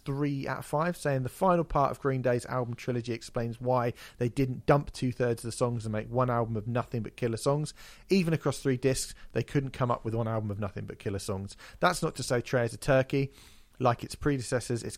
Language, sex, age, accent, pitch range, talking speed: English, male, 40-59, British, 110-130 Hz, 235 wpm